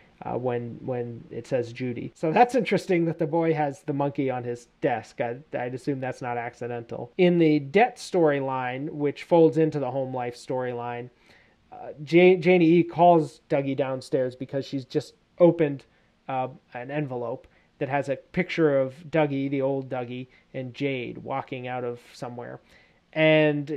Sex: male